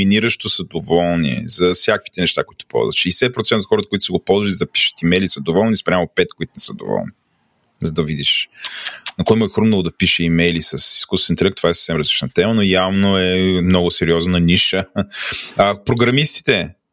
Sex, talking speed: male, 180 wpm